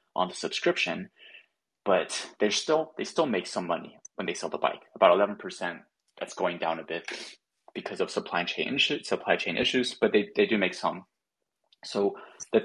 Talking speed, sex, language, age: 185 wpm, male, English, 20-39